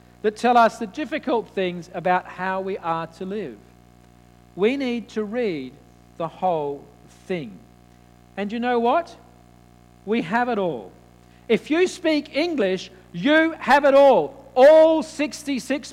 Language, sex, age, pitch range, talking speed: English, male, 50-69, 185-255 Hz, 140 wpm